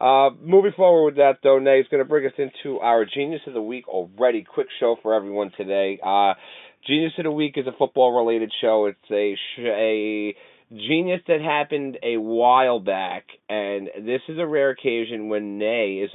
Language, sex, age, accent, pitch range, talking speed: English, male, 30-49, American, 105-135 Hz, 190 wpm